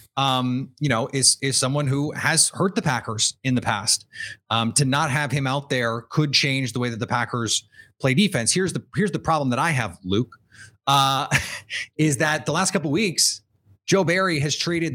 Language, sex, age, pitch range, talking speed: English, male, 30-49, 120-155 Hz, 205 wpm